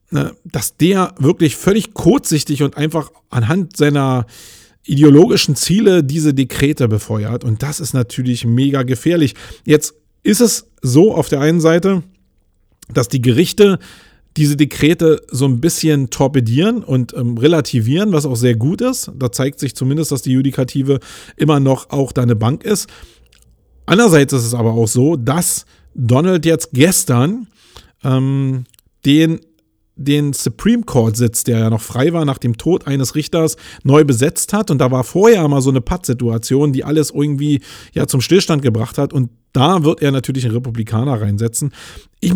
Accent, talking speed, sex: German, 160 wpm, male